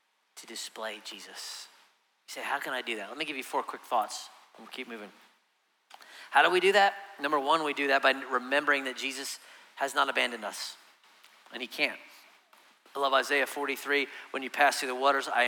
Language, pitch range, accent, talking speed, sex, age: English, 140-190 Hz, American, 205 wpm, male, 40-59